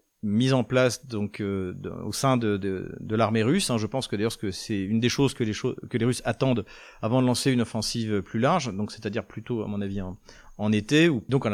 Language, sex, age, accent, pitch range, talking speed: French, male, 40-59, French, 105-135 Hz, 250 wpm